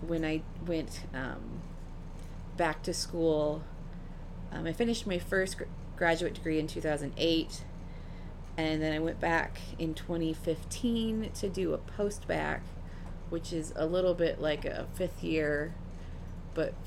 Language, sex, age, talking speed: English, female, 30-49, 140 wpm